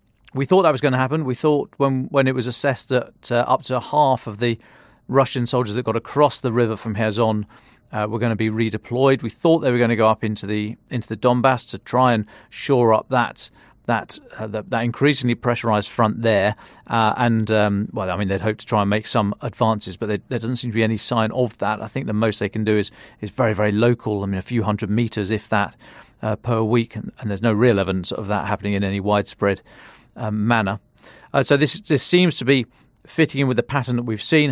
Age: 40-59